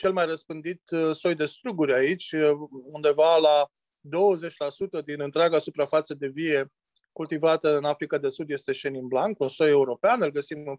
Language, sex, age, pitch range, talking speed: Romanian, male, 20-39, 145-170 Hz, 160 wpm